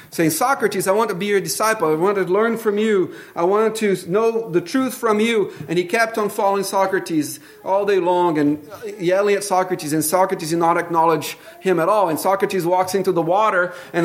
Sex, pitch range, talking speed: male, 150-200 Hz, 215 wpm